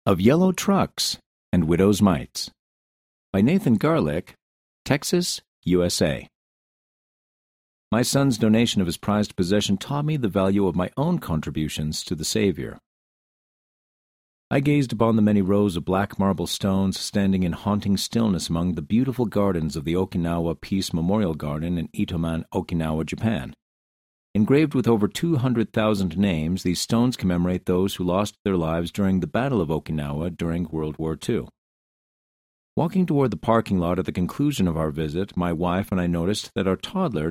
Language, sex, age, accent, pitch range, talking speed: English, male, 50-69, American, 85-110 Hz, 160 wpm